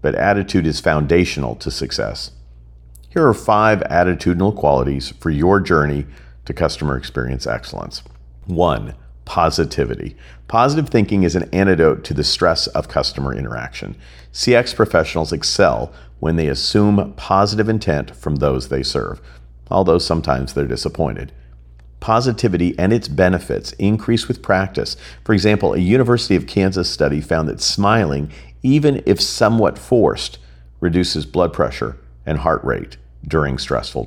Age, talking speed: 50-69, 135 wpm